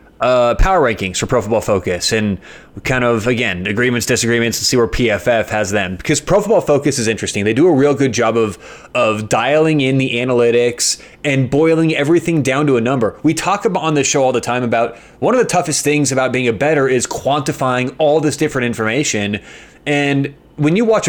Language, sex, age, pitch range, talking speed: English, male, 20-39, 120-155 Hz, 205 wpm